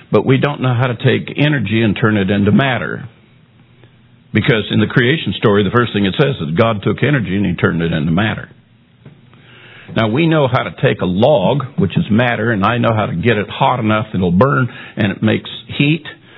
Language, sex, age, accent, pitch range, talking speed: English, male, 60-79, American, 105-130 Hz, 215 wpm